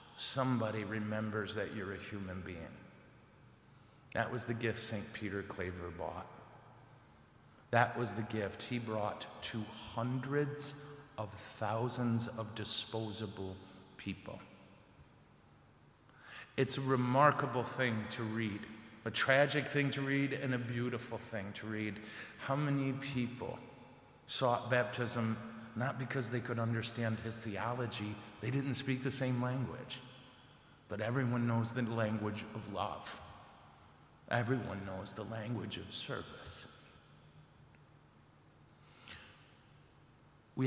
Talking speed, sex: 115 wpm, male